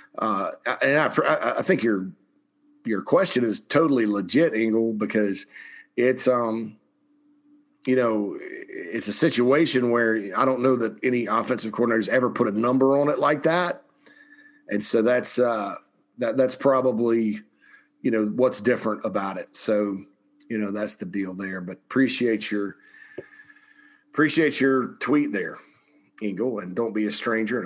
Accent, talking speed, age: American, 150 wpm, 40-59